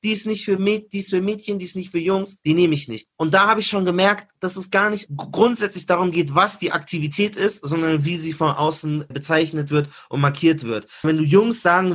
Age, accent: 30-49, German